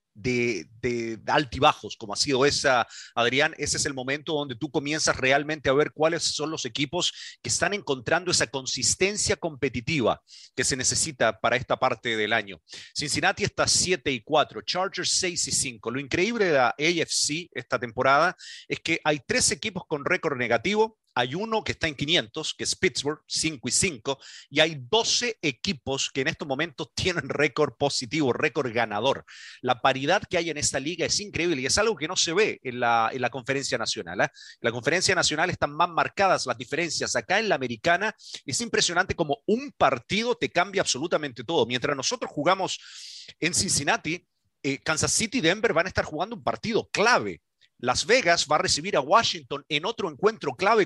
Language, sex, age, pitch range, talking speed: English, male, 40-59, 135-185 Hz, 185 wpm